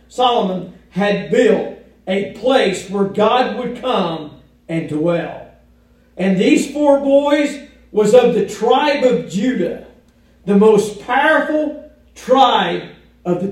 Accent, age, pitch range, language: American, 50-69, 190-255 Hz, English